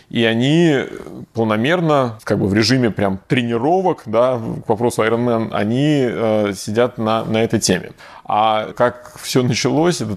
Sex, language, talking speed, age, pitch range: male, Russian, 140 wpm, 20-39, 105-125 Hz